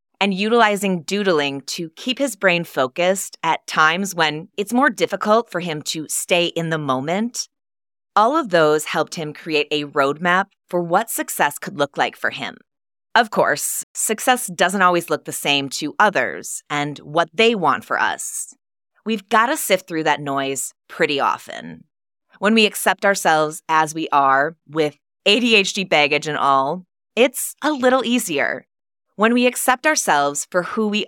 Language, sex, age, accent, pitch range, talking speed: English, female, 20-39, American, 145-205 Hz, 160 wpm